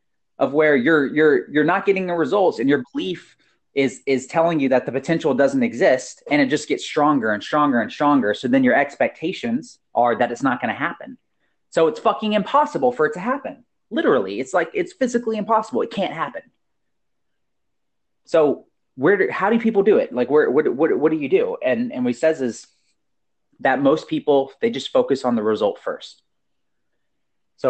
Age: 30-49